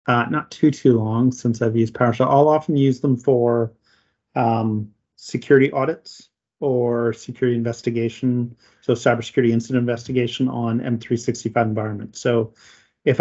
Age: 30-49